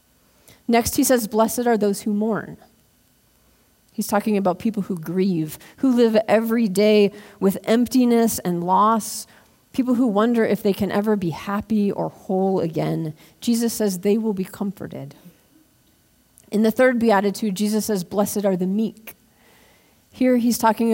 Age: 40-59